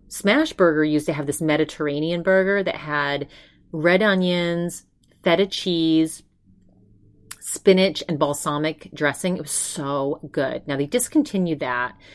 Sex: female